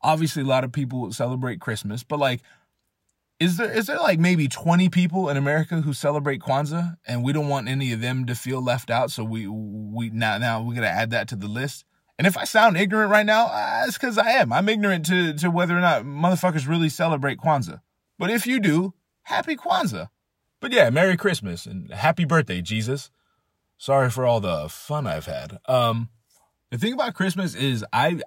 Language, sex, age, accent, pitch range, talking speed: English, male, 20-39, American, 110-155 Hz, 205 wpm